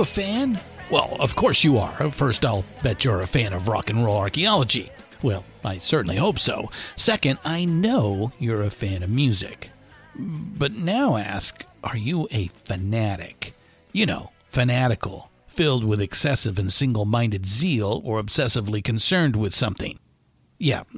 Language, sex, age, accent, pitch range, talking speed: English, male, 50-69, American, 105-135 Hz, 150 wpm